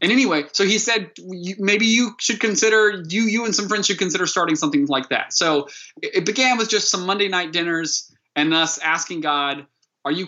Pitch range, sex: 140-185 Hz, male